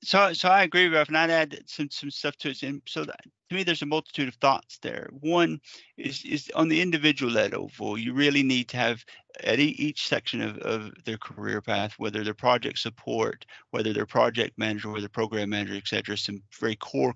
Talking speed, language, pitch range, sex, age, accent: 205 wpm, English, 110-140 Hz, male, 40-59, American